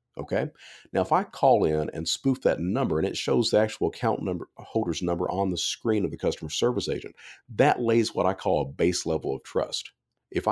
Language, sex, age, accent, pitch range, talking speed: English, male, 50-69, American, 85-115 Hz, 215 wpm